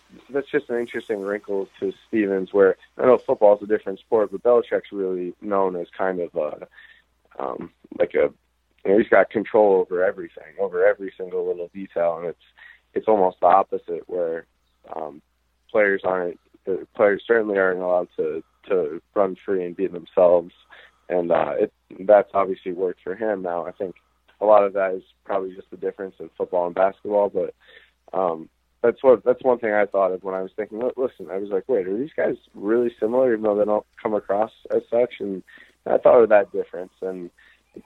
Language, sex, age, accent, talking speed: English, male, 20-39, American, 195 wpm